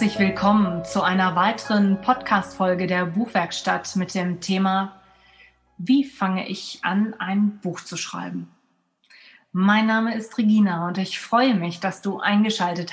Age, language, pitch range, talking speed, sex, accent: 30-49, German, 185-225 Hz, 140 wpm, female, German